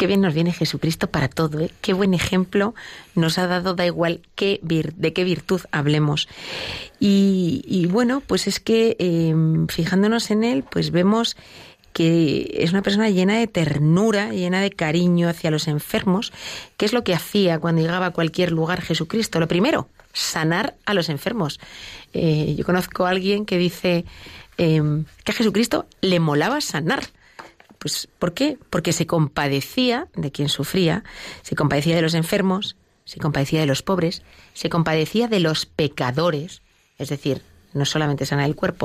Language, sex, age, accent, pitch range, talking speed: Spanish, female, 30-49, Spanish, 155-195 Hz, 170 wpm